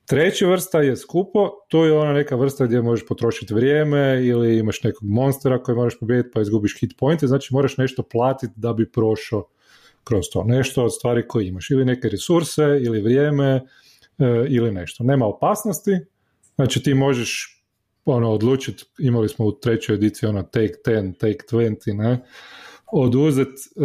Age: 30-49